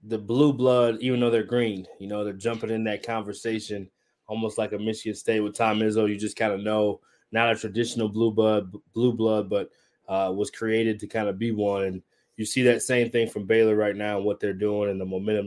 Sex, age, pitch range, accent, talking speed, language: male, 20-39, 105-115 Hz, American, 235 wpm, English